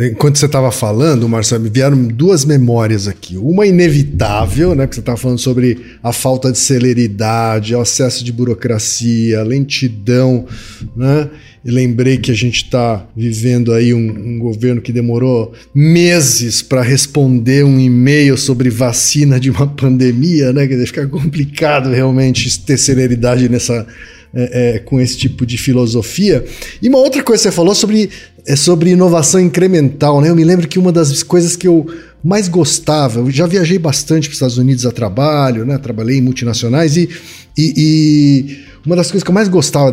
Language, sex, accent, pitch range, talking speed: Portuguese, male, Brazilian, 125-165 Hz, 175 wpm